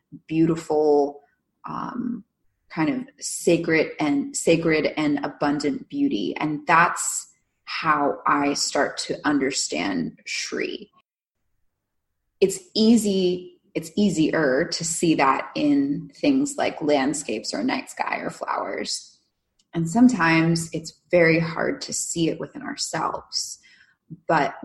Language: English